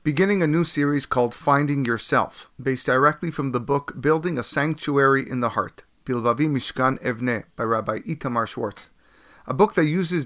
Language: English